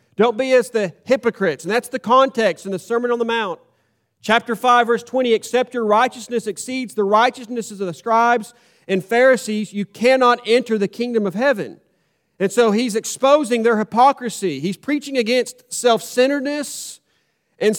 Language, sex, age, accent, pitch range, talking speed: English, male, 40-59, American, 205-260 Hz, 160 wpm